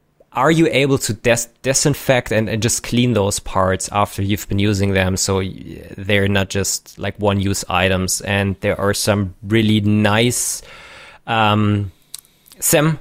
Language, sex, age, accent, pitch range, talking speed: English, male, 20-39, German, 95-115 Hz, 155 wpm